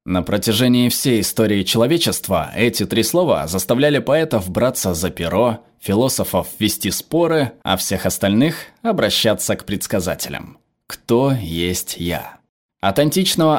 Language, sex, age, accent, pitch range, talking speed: Russian, male, 20-39, native, 95-135 Hz, 120 wpm